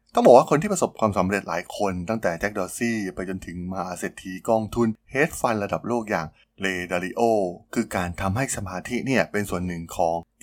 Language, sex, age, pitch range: Thai, male, 20-39, 90-115 Hz